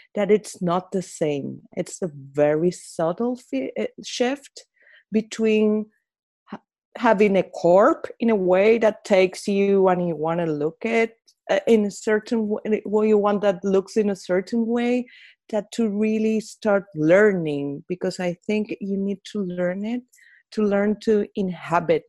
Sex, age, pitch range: female, 30-49, 175-220 Hz